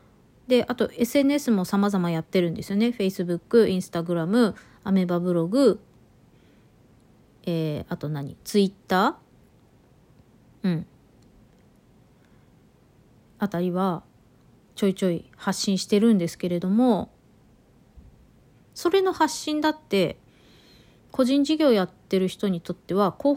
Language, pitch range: Japanese, 185-275 Hz